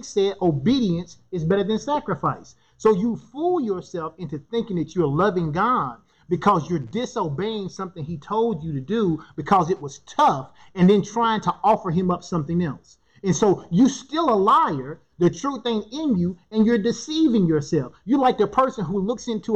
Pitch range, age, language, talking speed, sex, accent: 165-235 Hz, 30-49, English, 185 wpm, male, American